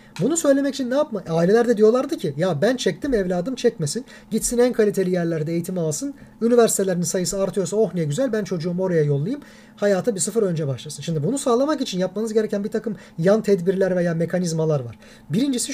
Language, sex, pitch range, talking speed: Turkish, male, 170-230 Hz, 185 wpm